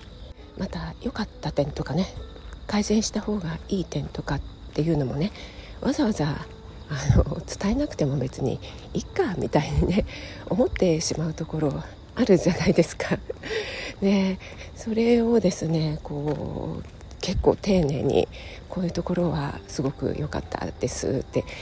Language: Japanese